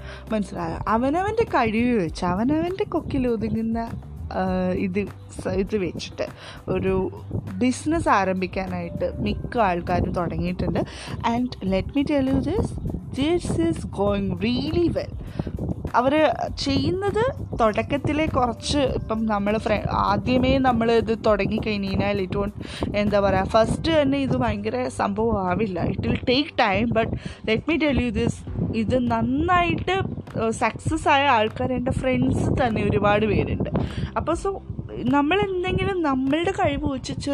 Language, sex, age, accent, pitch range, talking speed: English, female, 20-39, Indian, 205-300 Hz, 80 wpm